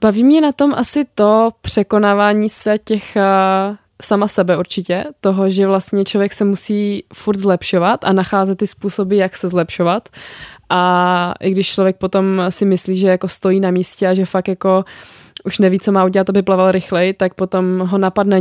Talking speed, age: 180 wpm, 20-39